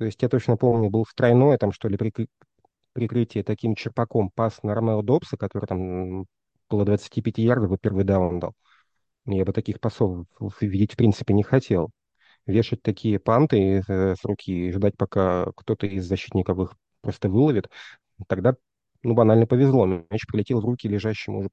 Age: 30-49